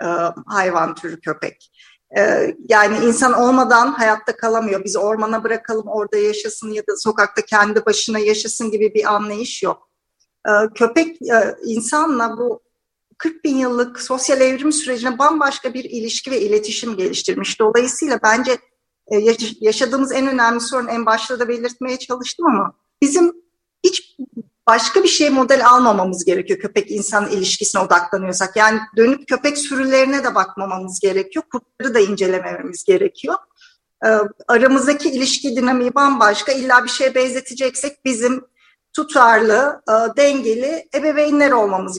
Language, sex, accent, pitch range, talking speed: Turkish, female, native, 215-270 Hz, 125 wpm